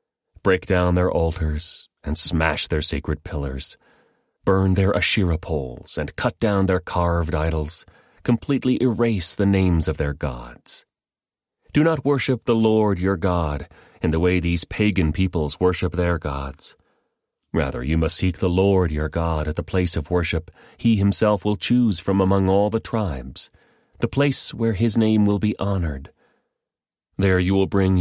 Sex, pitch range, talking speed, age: male, 80-100 Hz, 165 wpm, 30-49